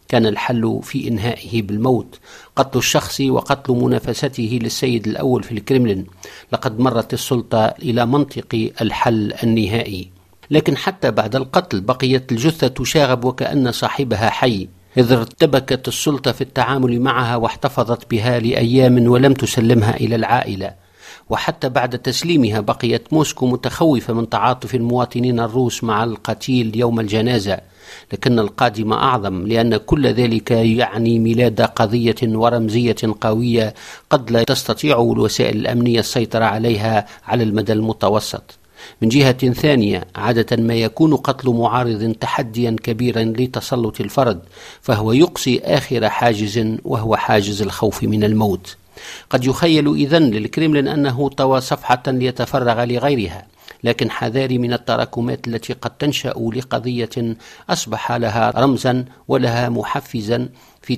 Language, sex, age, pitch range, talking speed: Arabic, male, 50-69, 115-130 Hz, 120 wpm